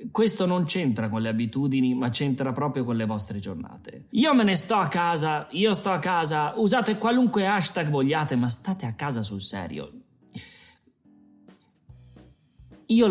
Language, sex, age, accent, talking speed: Italian, male, 30-49, native, 155 wpm